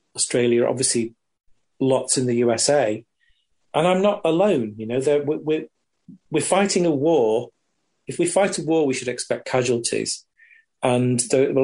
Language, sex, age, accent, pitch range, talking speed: English, male, 40-59, British, 120-165 Hz, 150 wpm